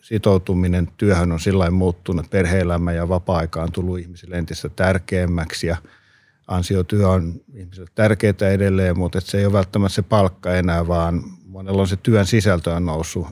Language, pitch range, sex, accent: Finnish, 90-100 Hz, male, native